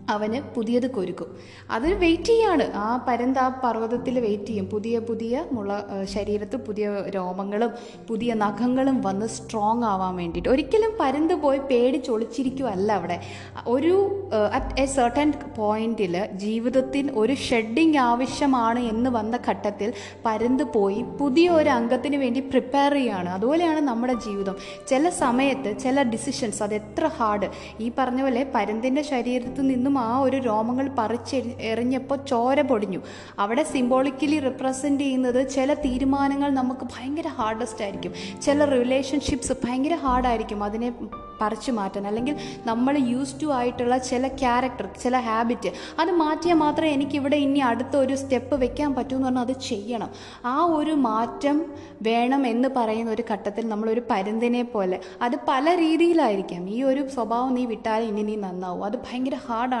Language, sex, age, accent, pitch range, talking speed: Malayalam, female, 20-39, native, 220-275 Hz, 130 wpm